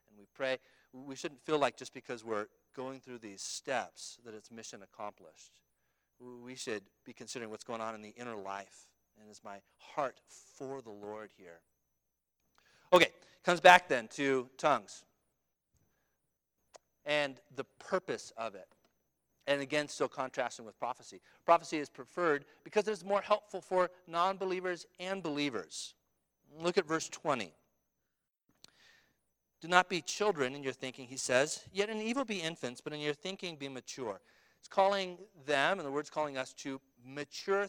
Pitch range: 125-175 Hz